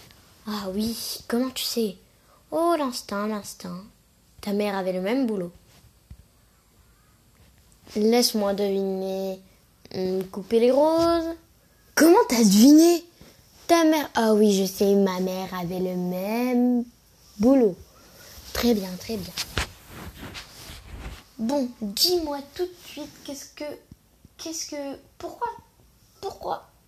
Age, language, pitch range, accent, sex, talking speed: 20-39, French, 200-265 Hz, French, female, 110 wpm